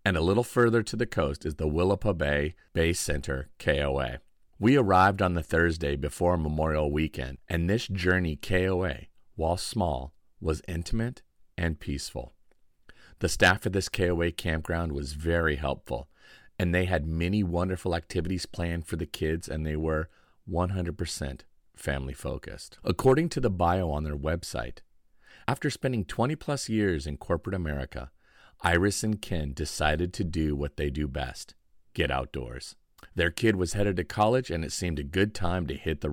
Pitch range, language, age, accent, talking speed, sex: 75-100 Hz, English, 40-59, American, 165 wpm, male